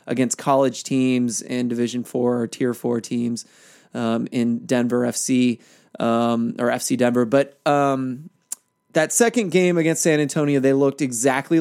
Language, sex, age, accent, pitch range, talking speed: English, male, 20-39, American, 125-150 Hz, 150 wpm